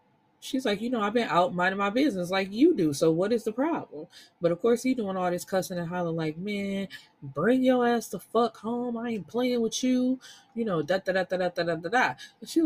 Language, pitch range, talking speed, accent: English, 155-230 Hz, 245 wpm, American